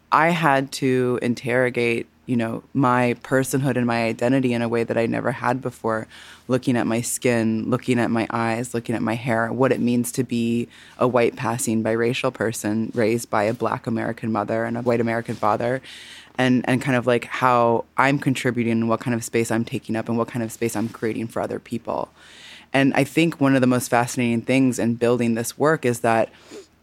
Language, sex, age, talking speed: English, female, 20-39, 210 wpm